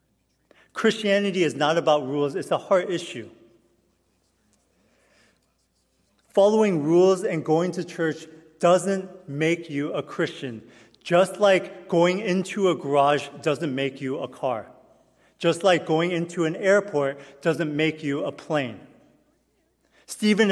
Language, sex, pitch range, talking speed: English, male, 150-185 Hz, 125 wpm